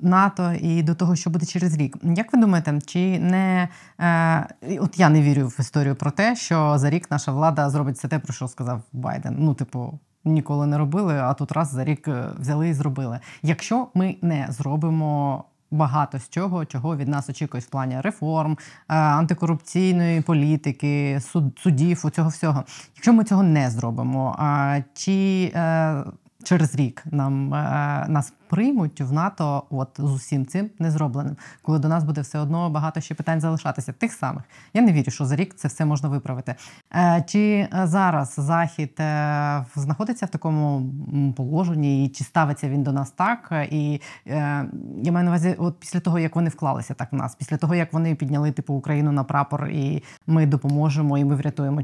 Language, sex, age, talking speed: Ukrainian, female, 20-39, 185 wpm